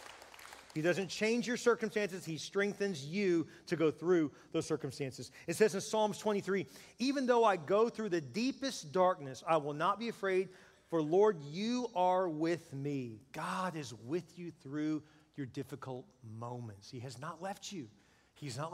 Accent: American